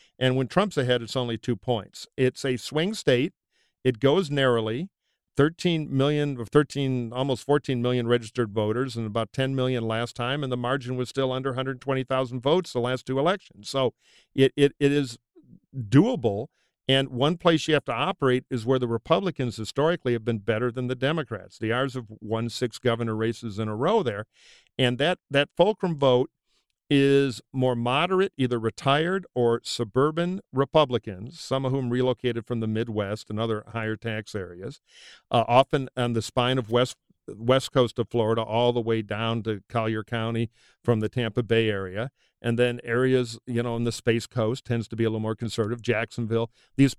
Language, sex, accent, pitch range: English, male, American, 115-135 Hz